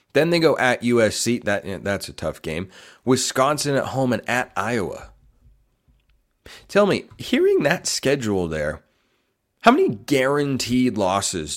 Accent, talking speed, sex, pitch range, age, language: American, 130 wpm, male, 95-130 Hz, 30-49, English